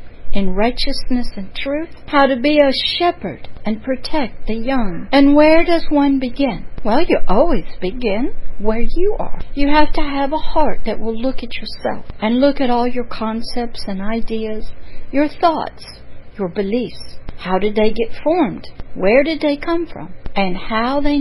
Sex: female